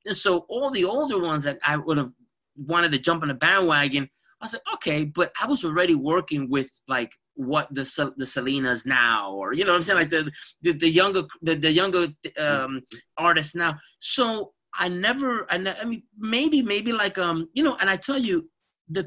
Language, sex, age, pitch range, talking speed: English, male, 30-49, 145-190 Hz, 210 wpm